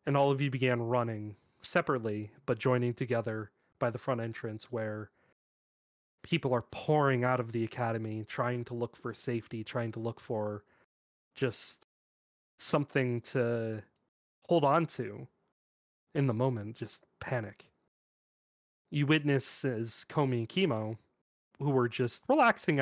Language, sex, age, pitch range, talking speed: English, male, 30-49, 110-135 Hz, 135 wpm